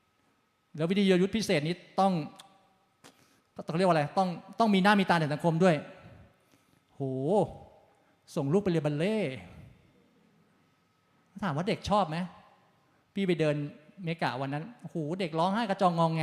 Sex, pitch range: male, 160-215 Hz